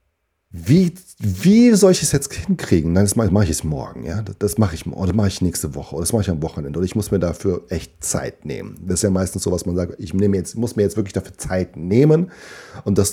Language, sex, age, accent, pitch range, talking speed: German, male, 40-59, German, 80-100 Hz, 260 wpm